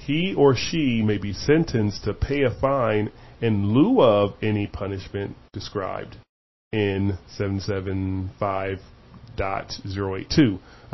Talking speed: 100 wpm